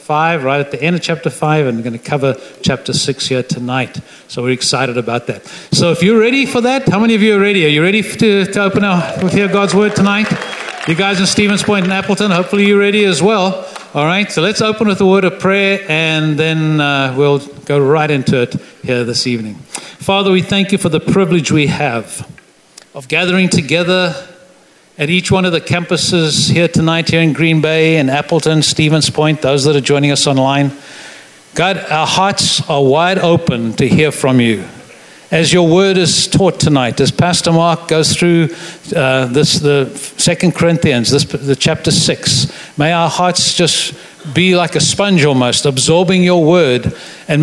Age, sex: 60-79, male